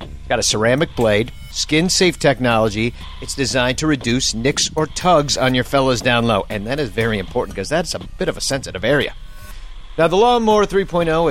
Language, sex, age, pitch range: English, male, 40-59, 120-175 Hz